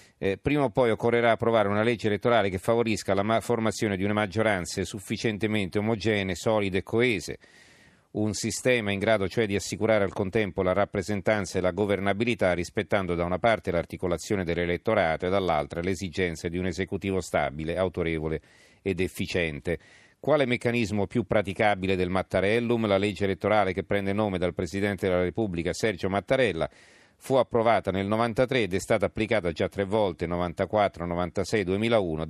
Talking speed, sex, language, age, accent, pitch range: 155 wpm, male, Italian, 40-59, native, 90-110 Hz